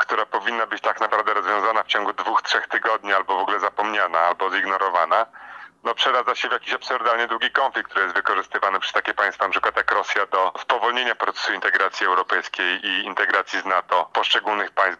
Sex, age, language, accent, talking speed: male, 40-59, Polish, native, 185 wpm